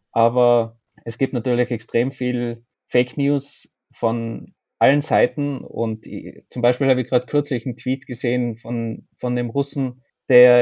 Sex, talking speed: male, 155 wpm